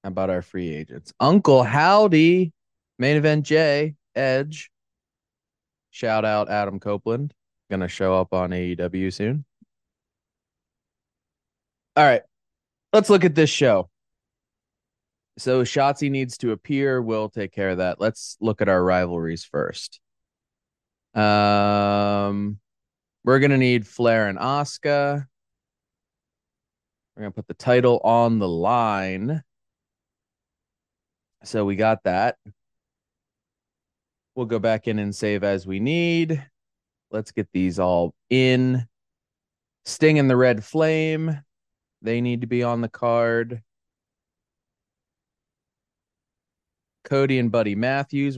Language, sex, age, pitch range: English, male, 20-39, 95-130 Hz